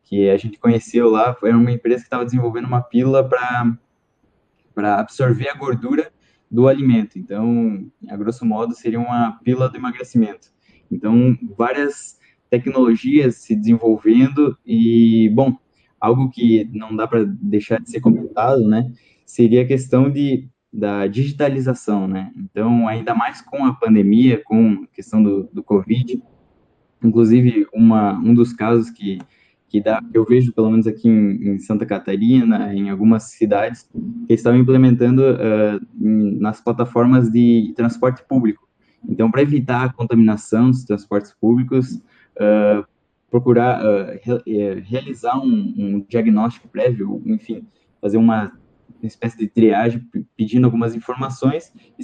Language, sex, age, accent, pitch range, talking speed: Portuguese, male, 10-29, Brazilian, 110-125 Hz, 140 wpm